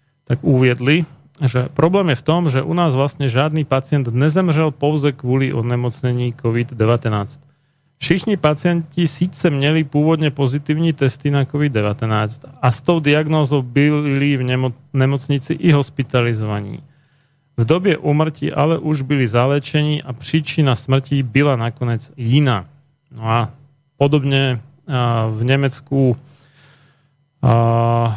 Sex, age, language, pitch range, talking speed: male, 40-59, Slovak, 125-145 Hz, 115 wpm